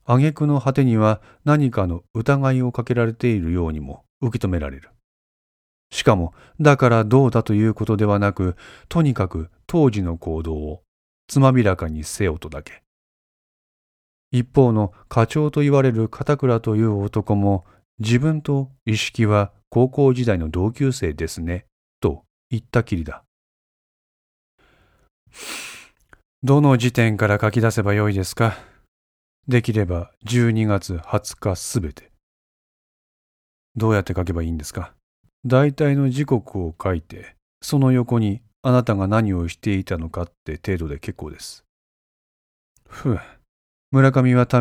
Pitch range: 90-125 Hz